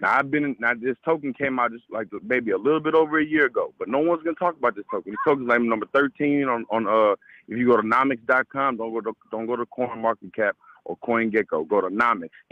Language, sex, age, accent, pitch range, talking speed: English, male, 30-49, American, 105-130 Hz, 245 wpm